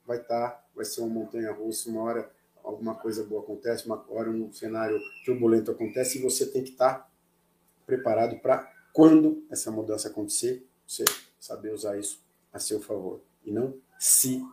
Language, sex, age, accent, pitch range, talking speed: Portuguese, male, 50-69, Brazilian, 110-145 Hz, 160 wpm